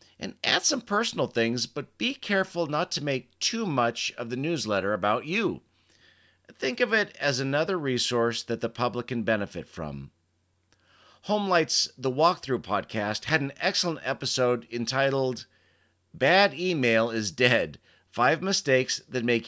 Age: 40-59